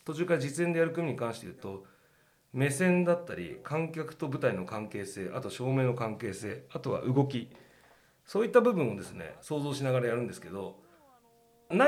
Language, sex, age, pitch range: Japanese, male, 40-59, 125-185 Hz